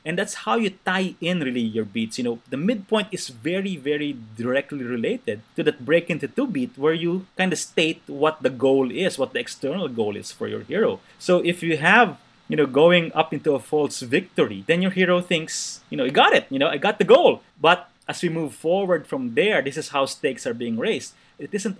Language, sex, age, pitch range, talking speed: English, male, 30-49, 125-180 Hz, 230 wpm